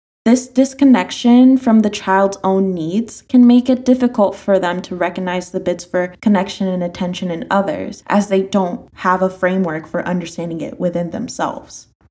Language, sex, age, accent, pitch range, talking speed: English, female, 10-29, American, 185-230 Hz, 170 wpm